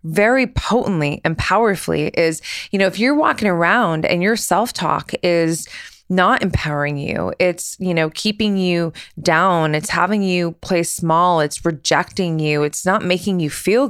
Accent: American